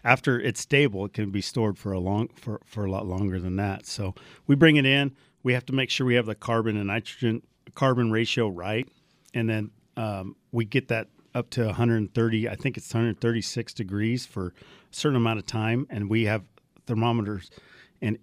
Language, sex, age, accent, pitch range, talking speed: English, male, 40-59, American, 105-125 Hz, 200 wpm